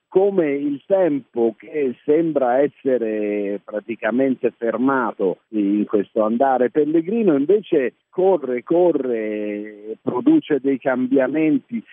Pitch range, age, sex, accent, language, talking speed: 110-155 Hz, 50-69, male, native, Italian, 90 wpm